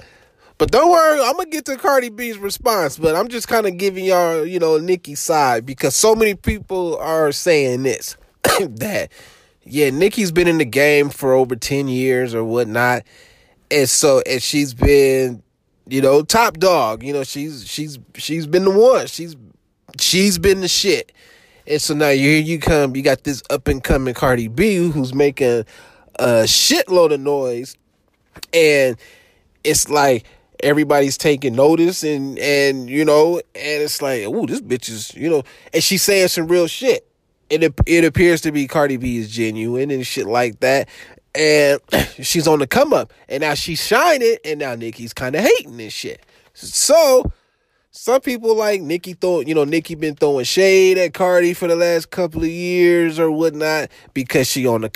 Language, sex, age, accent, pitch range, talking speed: English, male, 20-39, American, 135-180 Hz, 180 wpm